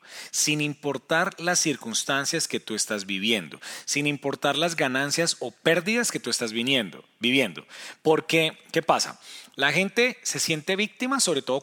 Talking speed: 150 wpm